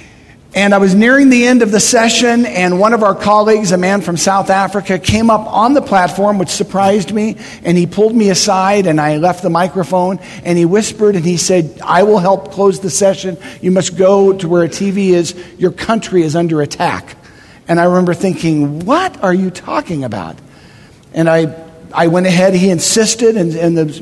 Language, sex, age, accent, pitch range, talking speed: English, male, 50-69, American, 160-195 Hz, 200 wpm